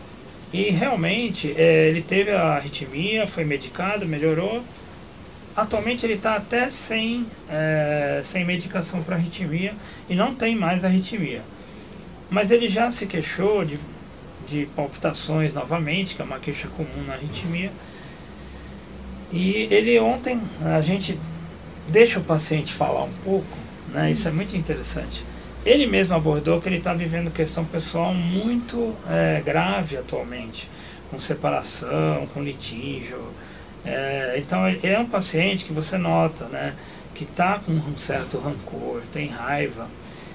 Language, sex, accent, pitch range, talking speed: Portuguese, male, Brazilian, 150-195 Hz, 130 wpm